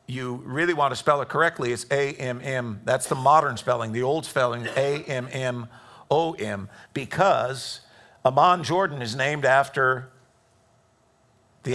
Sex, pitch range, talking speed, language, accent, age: male, 130-175 Hz, 125 wpm, English, American, 50-69